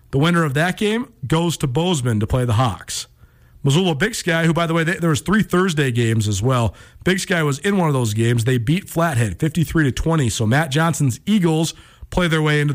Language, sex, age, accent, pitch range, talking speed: English, male, 40-59, American, 125-165 Hz, 220 wpm